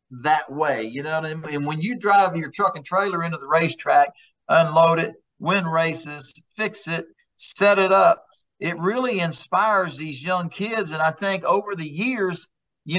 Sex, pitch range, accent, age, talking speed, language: male, 160-210 Hz, American, 50-69, 185 wpm, English